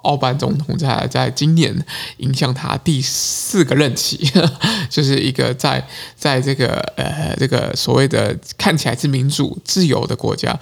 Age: 20-39